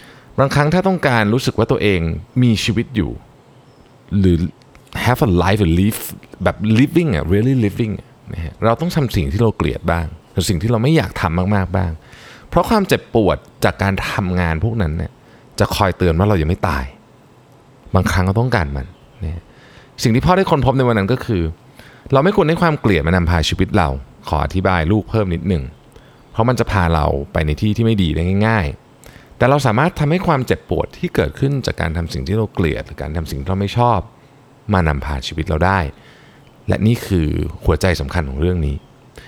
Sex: male